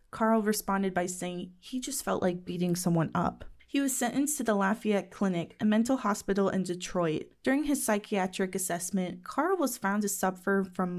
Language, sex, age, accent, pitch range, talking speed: English, female, 20-39, American, 185-230 Hz, 180 wpm